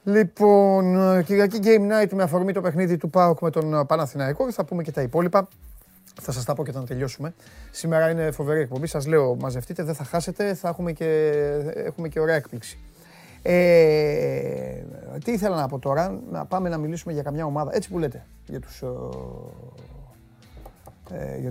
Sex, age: male, 30-49